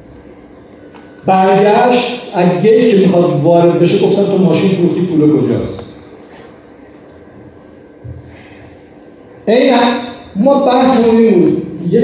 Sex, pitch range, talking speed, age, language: male, 155-210 Hz, 90 wpm, 50-69, Persian